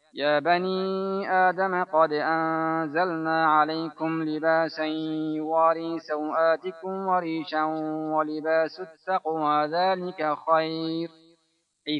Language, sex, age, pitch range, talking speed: Persian, male, 30-49, 145-190 Hz, 80 wpm